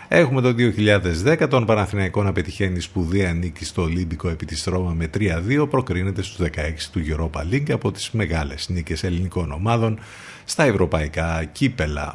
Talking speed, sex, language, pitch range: 155 wpm, male, Greek, 85-120 Hz